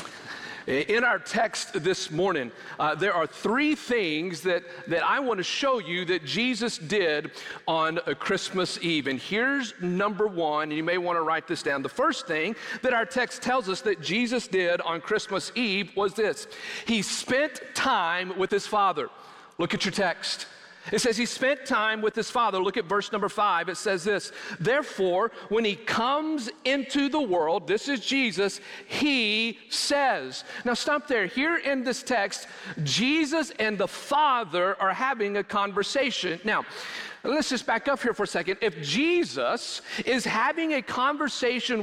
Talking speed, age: 170 wpm, 40-59